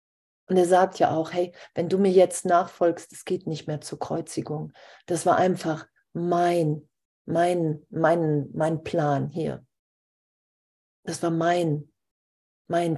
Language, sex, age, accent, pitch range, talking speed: German, female, 40-59, German, 155-180 Hz, 140 wpm